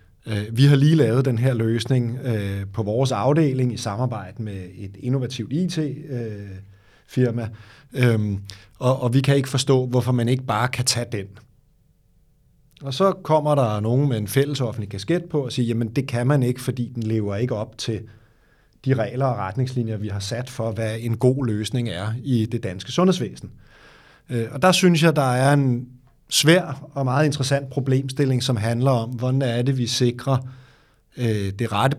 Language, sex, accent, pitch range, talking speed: Danish, male, native, 115-135 Hz, 170 wpm